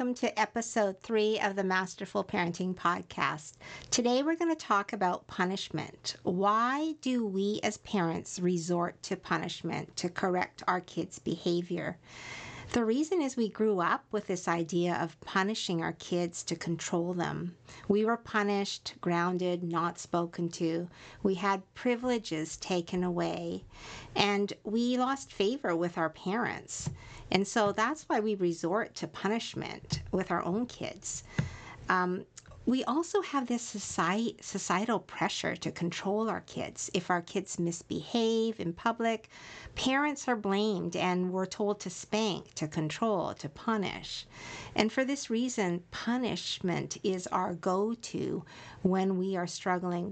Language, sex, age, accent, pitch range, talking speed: English, female, 50-69, American, 175-220 Hz, 140 wpm